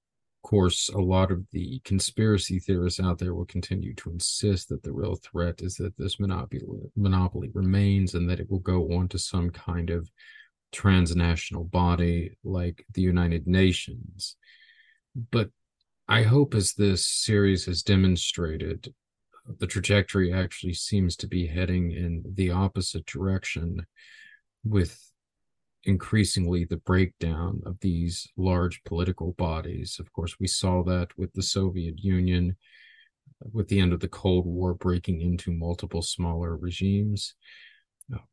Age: 40-59